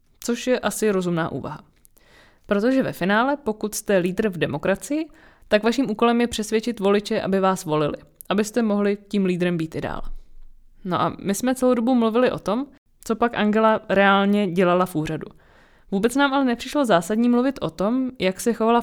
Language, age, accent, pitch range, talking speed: Czech, 20-39, native, 185-230 Hz, 180 wpm